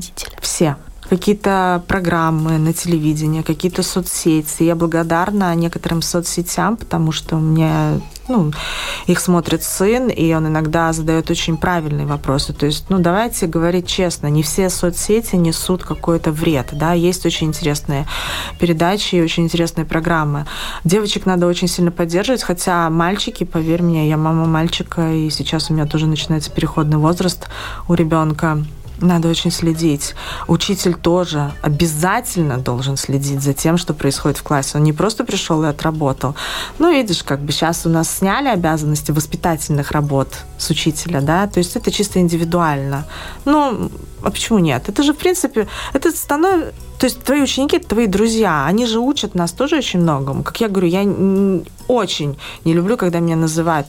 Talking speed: 160 wpm